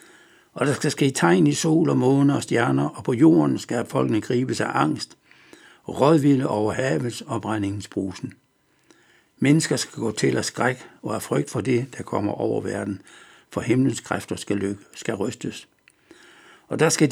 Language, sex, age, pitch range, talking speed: Danish, male, 60-79, 110-155 Hz, 160 wpm